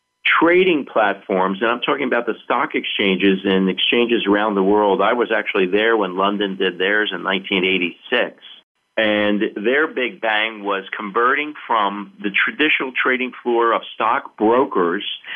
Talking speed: 150 wpm